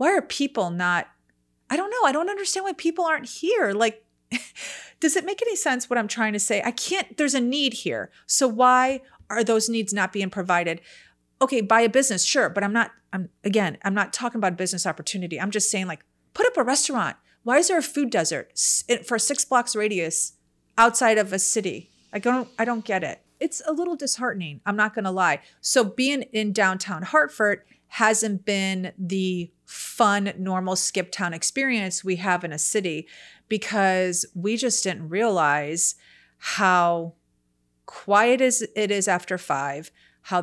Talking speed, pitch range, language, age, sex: 185 wpm, 180-240 Hz, English, 30-49, female